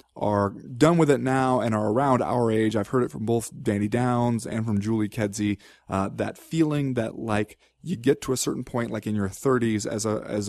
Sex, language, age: male, English, 30-49